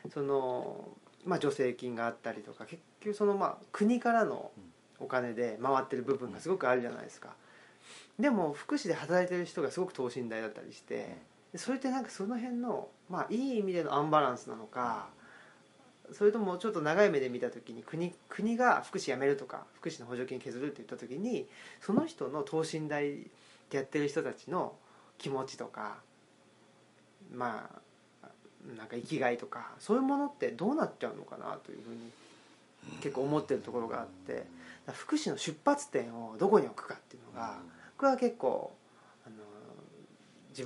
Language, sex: Japanese, male